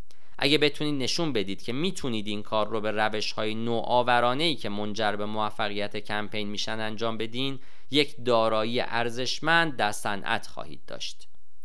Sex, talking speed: male, 150 wpm